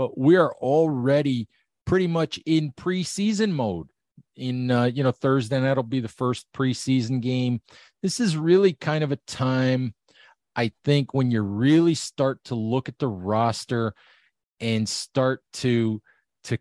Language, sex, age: English, male, 40-59